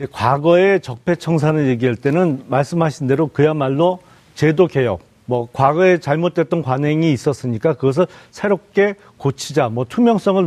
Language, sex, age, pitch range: Korean, male, 40-59, 145-195 Hz